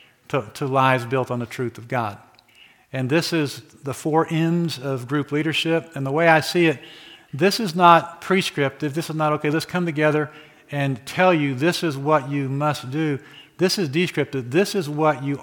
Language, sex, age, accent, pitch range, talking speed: English, male, 50-69, American, 125-150 Hz, 200 wpm